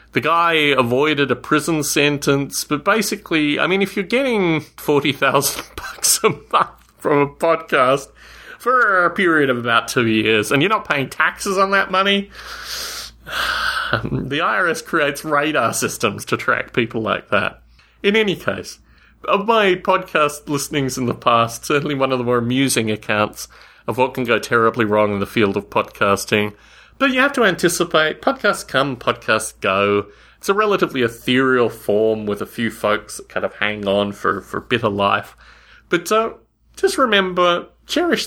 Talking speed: 170 wpm